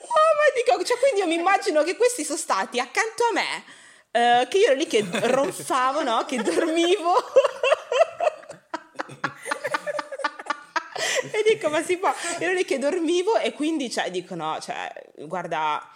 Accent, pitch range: native, 165-250 Hz